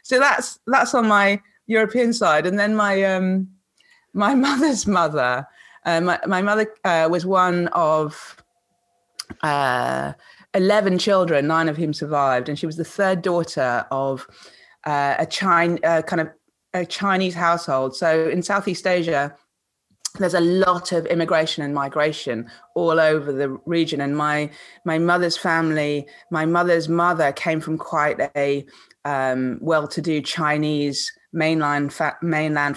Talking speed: 140 wpm